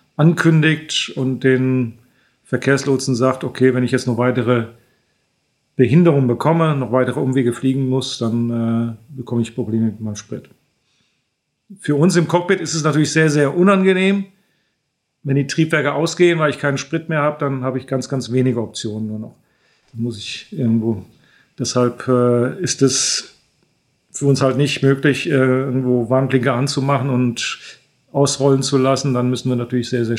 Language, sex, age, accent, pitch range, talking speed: German, male, 40-59, German, 125-145 Hz, 165 wpm